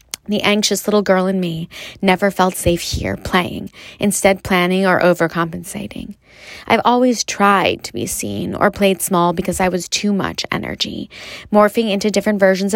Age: 20-39